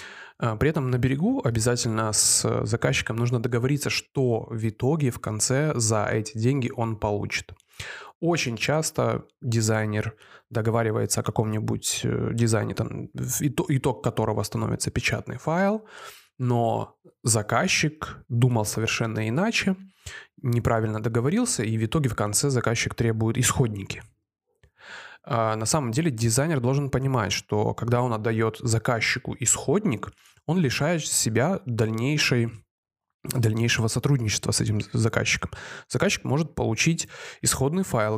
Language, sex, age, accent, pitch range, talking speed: Russian, male, 20-39, native, 115-140 Hz, 110 wpm